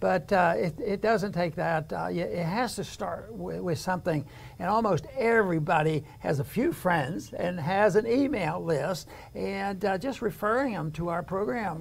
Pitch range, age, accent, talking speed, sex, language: 160-195 Hz, 60-79, American, 180 wpm, male, English